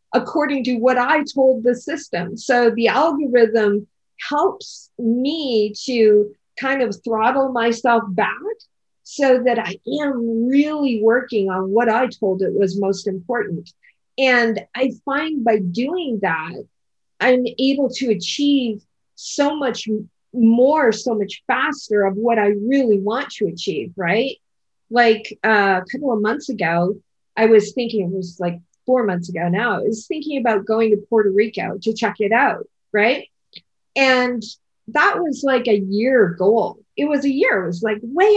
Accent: American